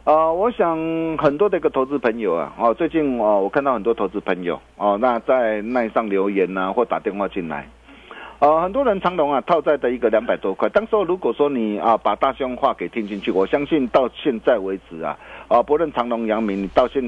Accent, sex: native, male